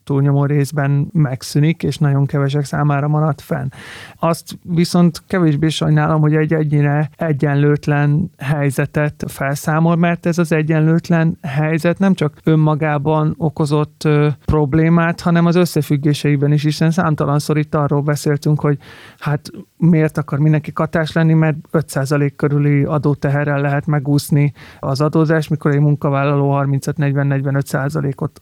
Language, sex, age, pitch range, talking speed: Hungarian, male, 30-49, 145-160 Hz, 120 wpm